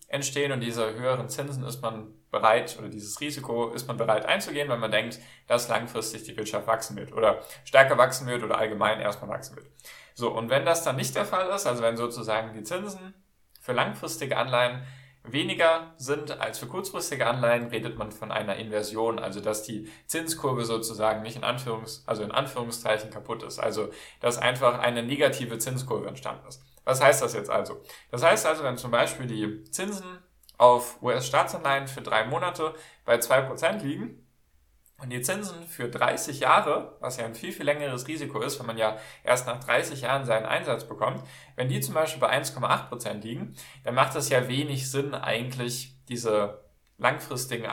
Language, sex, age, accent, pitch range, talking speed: German, male, 10-29, German, 110-140 Hz, 175 wpm